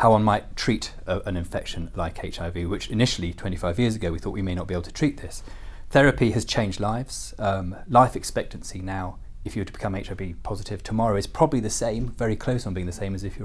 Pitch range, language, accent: 90-120 Hz, English, British